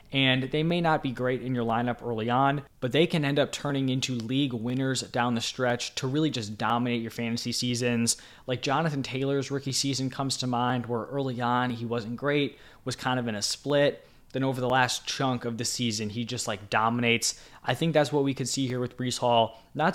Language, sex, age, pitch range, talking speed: English, male, 20-39, 115-135 Hz, 225 wpm